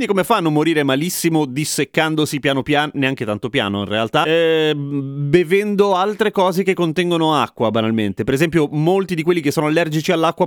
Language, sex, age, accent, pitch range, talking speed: Italian, male, 30-49, native, 140-200 Hz, 170 wpm